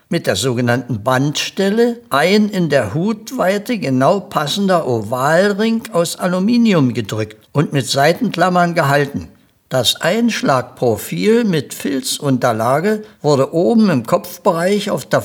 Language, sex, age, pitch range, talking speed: German, male, 60-79, 135-205 Hz, 110 wpm